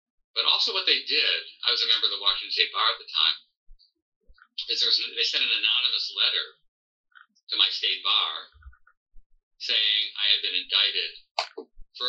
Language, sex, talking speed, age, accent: English, male, 170 wpm, 50-69, American